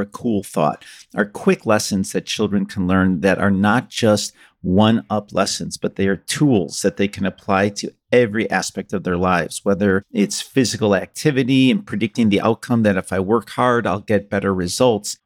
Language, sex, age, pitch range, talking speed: English, male, 50-69, 100-125 Hz, 185 wpm